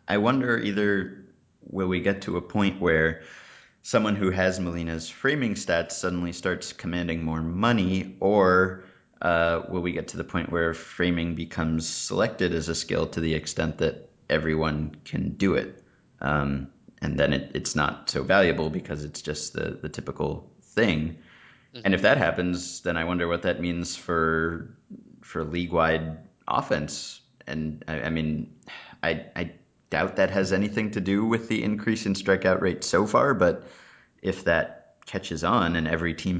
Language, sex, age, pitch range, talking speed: English, male, 30-49, 80-95 Hz, 165 wpm